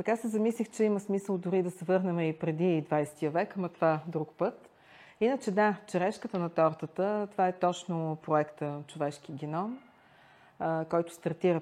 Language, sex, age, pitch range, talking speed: Bulgarian, female, 40-59, 160-195 Hz, 160 wpm